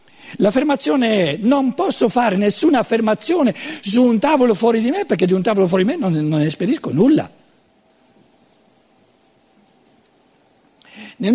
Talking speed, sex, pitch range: 130 wpm, male, 150-250 Hz